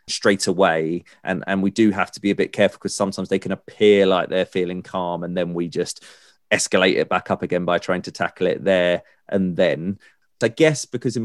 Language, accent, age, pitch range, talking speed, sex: English, British, 30-49, 90-110 Hz, 225 wpm, male